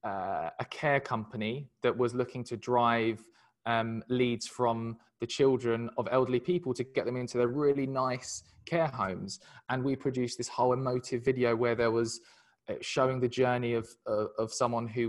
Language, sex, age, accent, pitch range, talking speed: English, male, 20-39, British, 115-135 Hz, 180 wpm